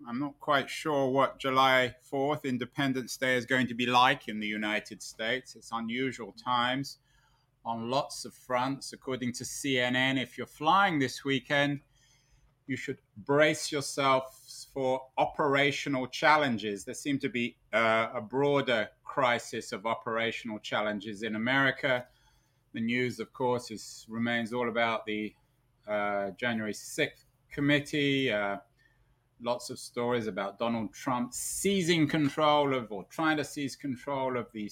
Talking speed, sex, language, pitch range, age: 140 wpm, male, English, 115-135 Hz, 30-49